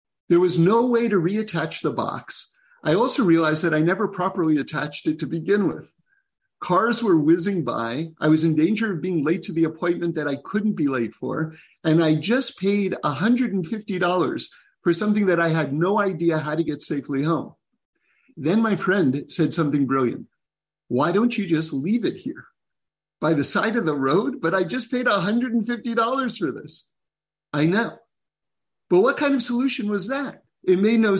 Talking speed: 185 wpm